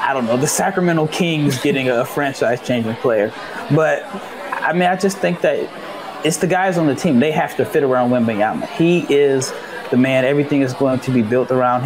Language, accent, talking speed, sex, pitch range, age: English, American, 205 wpm, male, 130-160 Hz, 20-39